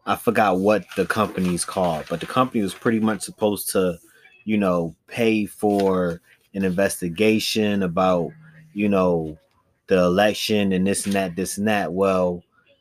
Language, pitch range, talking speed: English, 90-105 Hz, 155 wpm